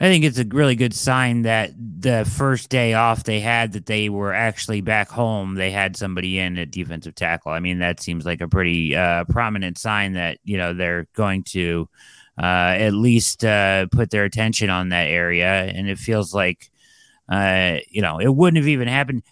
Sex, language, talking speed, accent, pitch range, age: male, English, 200 wpm, American, 95-115 Hz, 30-49